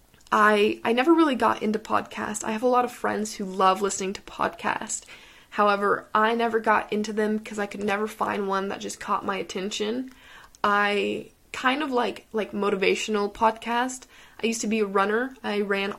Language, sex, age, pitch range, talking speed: English, female, 20-39, 195-220 Hz, 190 wpm